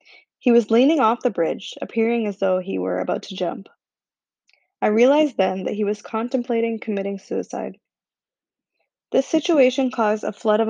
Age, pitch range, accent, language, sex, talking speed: 20-39, 190-240 Hz, American, English, female, 165 wpm